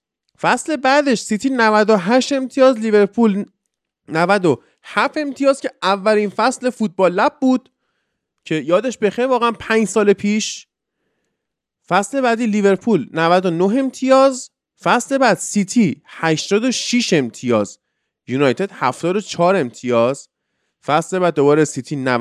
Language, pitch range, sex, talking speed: Persian, 160-230 Hz, male, 105 wpm